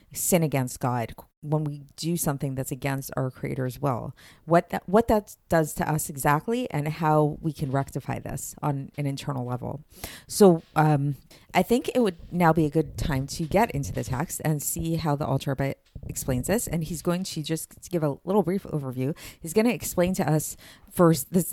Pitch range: 140-170 Hz